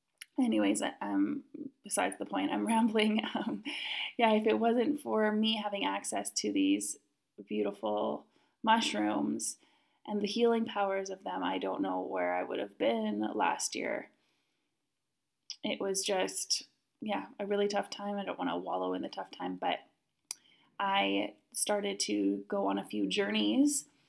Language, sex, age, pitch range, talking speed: English, female, 20-39, 195-245 Hz, 155 wpm